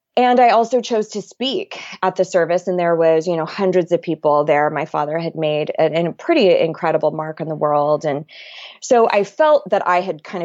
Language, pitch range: English, 170-225 Hz